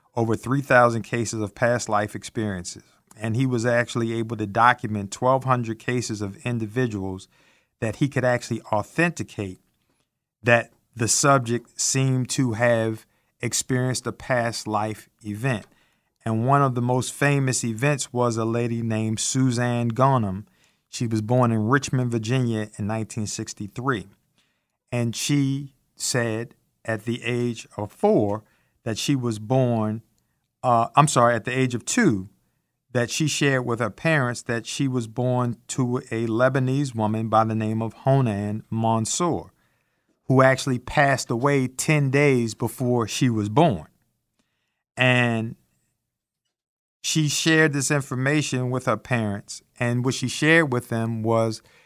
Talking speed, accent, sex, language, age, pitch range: 140 wpm, American, male, English, 50-69, 110-130 Hz